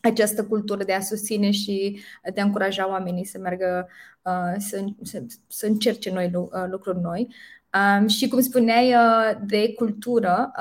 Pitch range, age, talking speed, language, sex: 190-220 Hz, 20-39, 135 wpm, Romanian, female